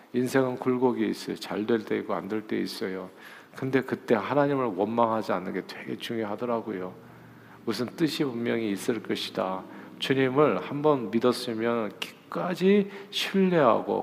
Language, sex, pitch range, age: Korean, male, 110-145 Hz, 50-69